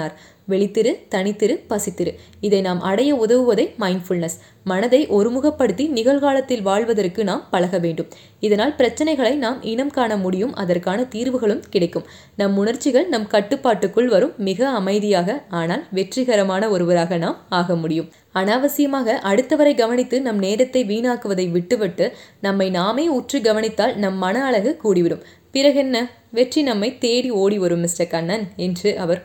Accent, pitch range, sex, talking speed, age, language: native, 180-240 Hz, female, 125 wpm, 20-39, Tamil